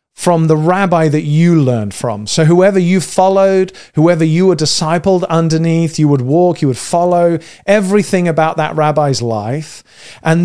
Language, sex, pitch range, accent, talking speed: English, male, 145-180 Hz, British, 160 wpm